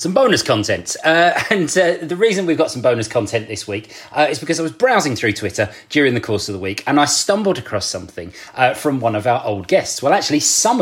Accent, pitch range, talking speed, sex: British, 115-165 Hz, 245 wpm, male